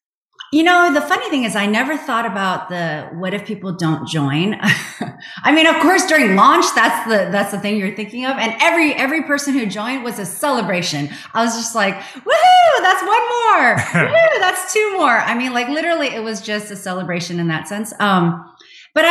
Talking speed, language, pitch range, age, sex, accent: 205 wpm, English, 180-265 Hz, 30-49, female, American